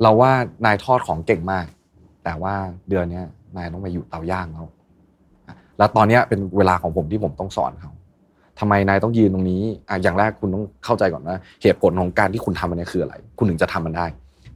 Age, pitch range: 20-39, 90-110 Hz